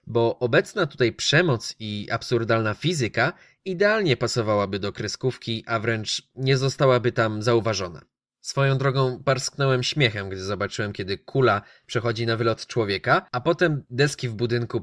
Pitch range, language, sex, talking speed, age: 115-150 Hz, Polish, male, 140 wpm, 20-39